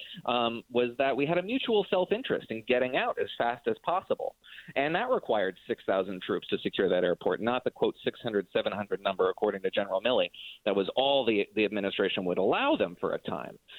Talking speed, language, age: 200 wpm, English, 30-49